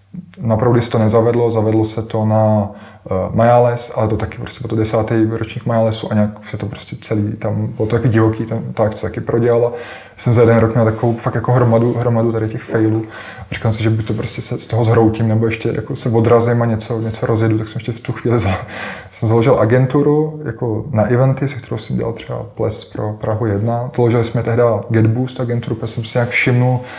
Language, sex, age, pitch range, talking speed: Czech, male, 20-39, 110-120 Hz, 210 wpm